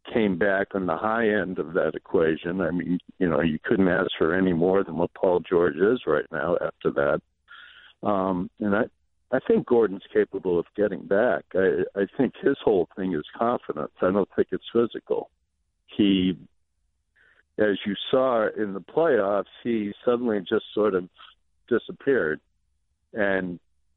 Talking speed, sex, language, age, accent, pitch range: 165 wpm, male, English, 60-79, American, 85-120 Hz